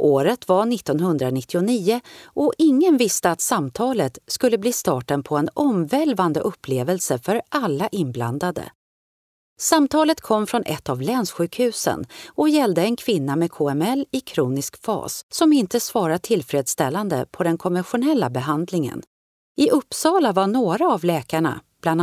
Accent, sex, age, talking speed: native, female, 40-59, 130 wpm